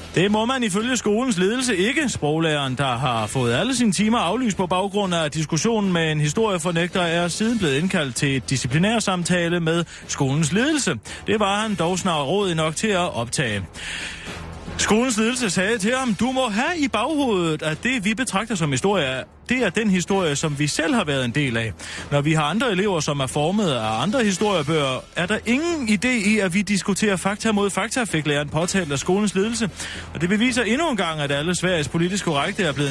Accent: native